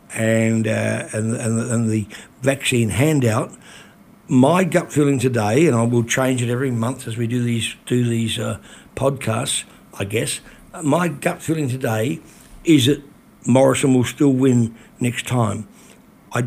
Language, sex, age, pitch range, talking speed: English, male, 60-79, 125-160 Hz, 150 wpm